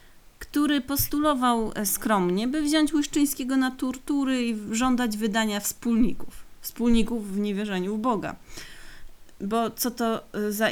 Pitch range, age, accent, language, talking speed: 180-235 Hz, 30-49, native, Polish, 120 wpm